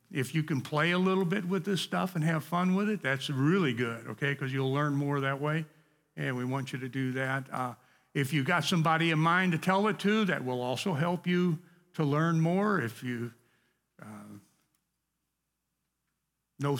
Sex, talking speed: male, 195 wpm